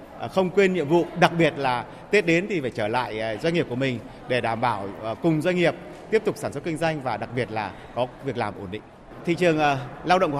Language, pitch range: Vietnamese, 130-175 Hz